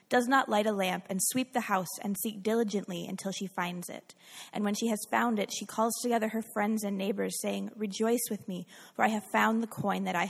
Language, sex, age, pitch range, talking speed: English, female, 20-39, 195-230 Hz, 240 wpm